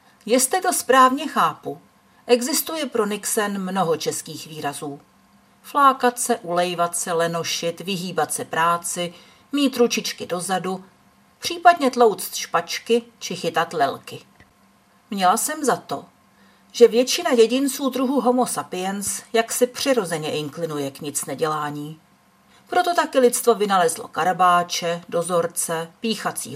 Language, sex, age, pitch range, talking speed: Czech, female, 40-59, 170-245 Hz, 115 wpm